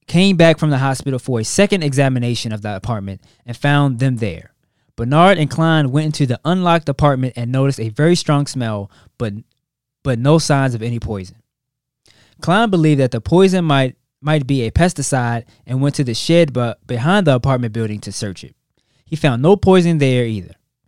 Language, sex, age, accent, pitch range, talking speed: English, male, 20-39, American, 120-155 Hz, 190 wpm